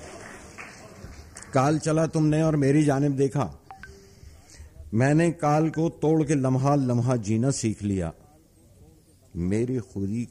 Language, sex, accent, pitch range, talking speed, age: Hindi, male, native, 95-130 Hz, 110 wpm, 50-69